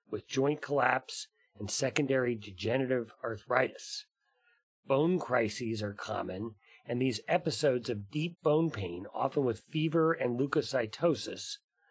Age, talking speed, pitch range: 40-59, 115 wpm, 115-160 Hz